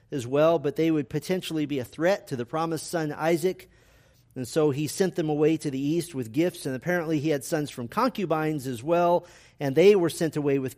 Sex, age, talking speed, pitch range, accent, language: male, 40-59, 225 wpm, 130-165 Hz, American, English